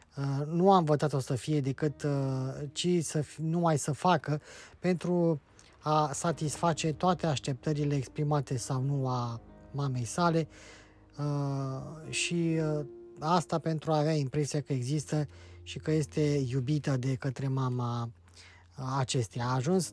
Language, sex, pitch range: Romanian, male, 135-160 Hz